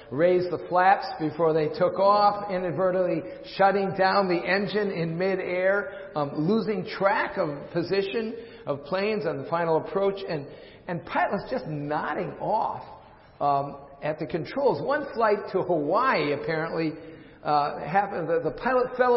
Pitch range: 160-210 Hz